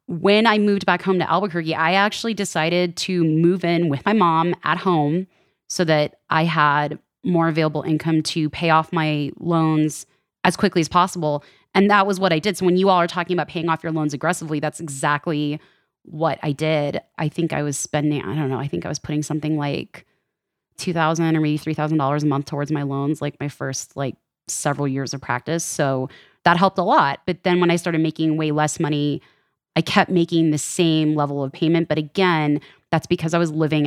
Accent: American